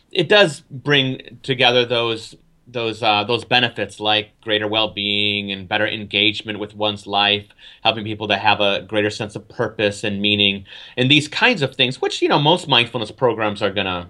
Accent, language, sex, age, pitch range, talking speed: American, English, male, 30-49, 105-130 Hz, 185 wpm